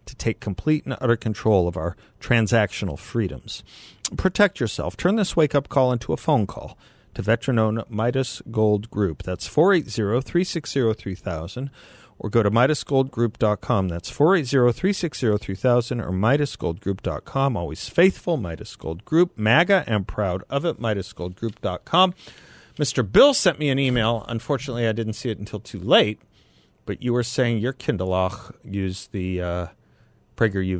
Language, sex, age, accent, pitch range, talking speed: English, male, 40-59, American, 95-125 Hz, 135 wpm